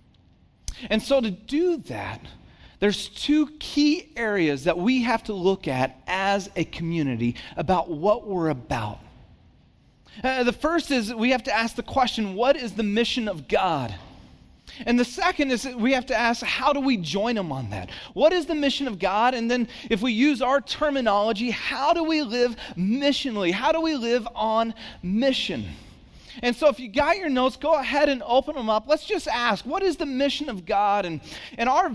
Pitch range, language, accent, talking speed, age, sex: 205-275 Hz, English, American, 190 wpm, 40-59, male